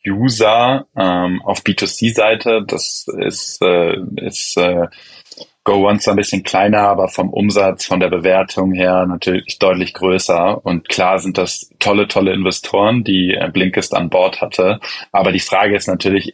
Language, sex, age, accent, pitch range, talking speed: German, male, 20-39, German, 90-100 Hz, 160 wpm